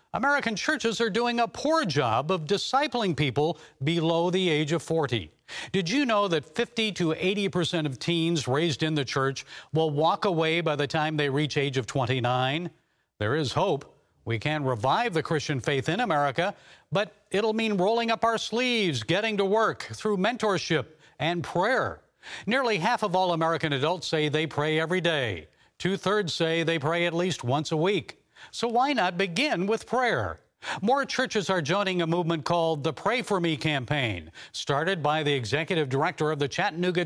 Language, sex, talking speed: English, male, 180 wpm